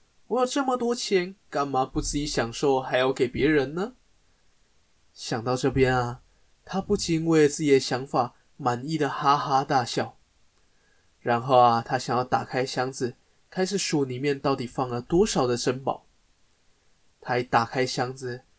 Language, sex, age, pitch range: Chinese, male, 20-39, 130-195 Hz